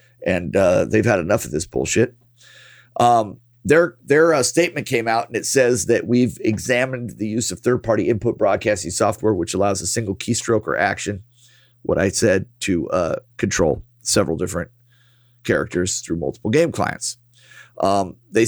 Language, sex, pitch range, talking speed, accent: English, male, 110-125 Hz, 160 wpm, American